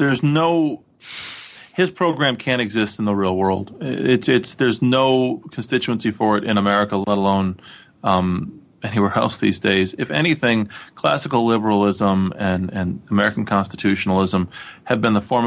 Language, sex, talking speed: English, male, 150 wpm